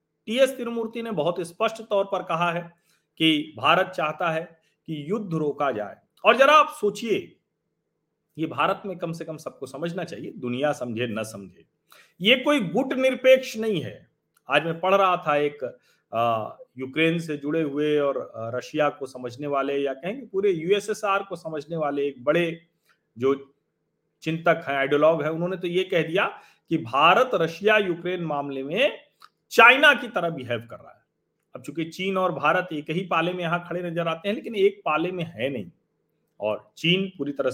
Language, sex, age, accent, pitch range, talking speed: Hindi, male, 40-59, native, 150-210 Hz, 180 wpm